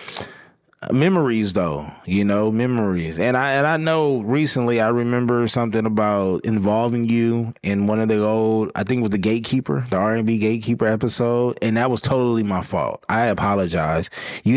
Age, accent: 20-39, American